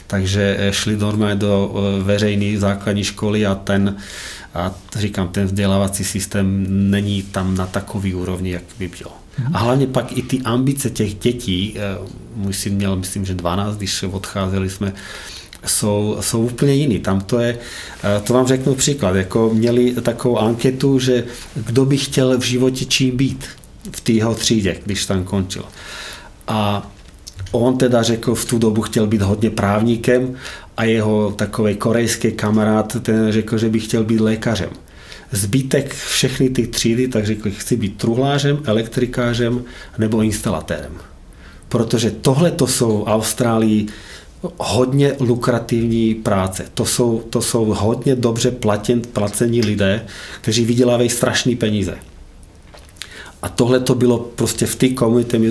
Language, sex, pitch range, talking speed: Czech, male, 100-120 Hz, 140 wpm